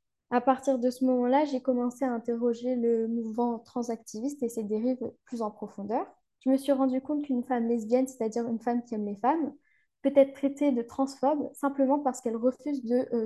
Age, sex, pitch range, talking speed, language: 10-29, female, 230-270 Hz, 200 wpm, French